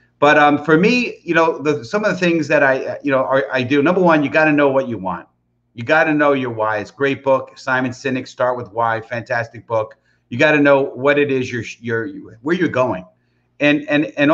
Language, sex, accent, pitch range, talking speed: English, male, American, 125-150 Hz, 245 wpm